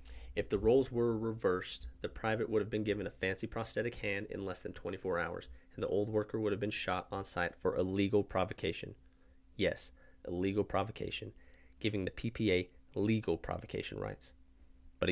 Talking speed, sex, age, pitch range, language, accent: 170 wpm, male, 30-49, 65-105 Hz, English, American